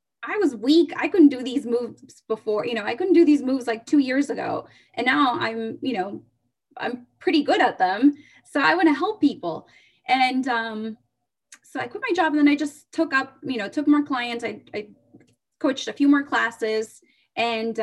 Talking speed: 210 wpm